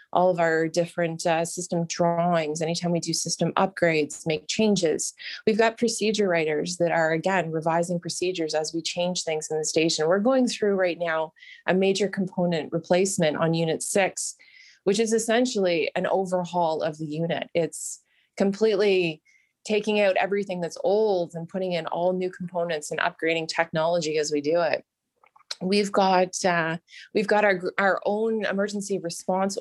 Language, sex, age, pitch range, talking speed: English, female, 20-39, 170-200 Hz, 160 wpm